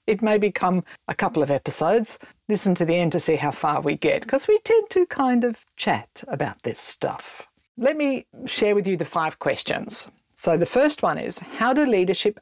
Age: 50-69